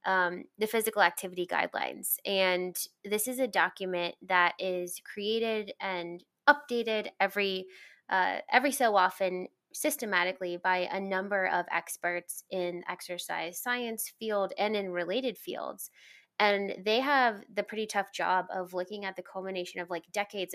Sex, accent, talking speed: female, American, 145 wpm